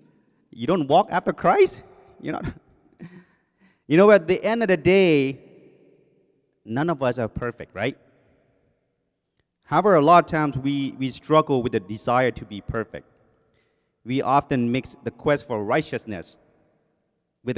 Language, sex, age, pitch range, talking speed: English, male, 30-49, 110-140 Hz, 140 wpm